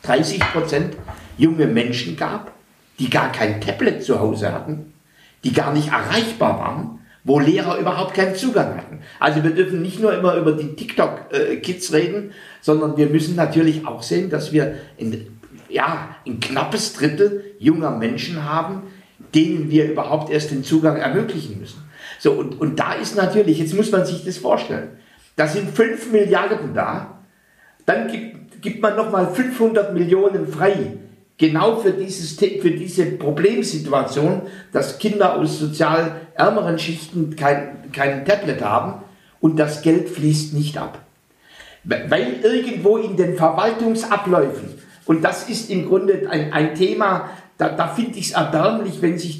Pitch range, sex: 155-205 Hz, male